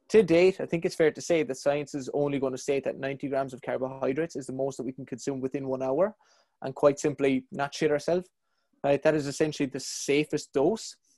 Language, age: English, 20-39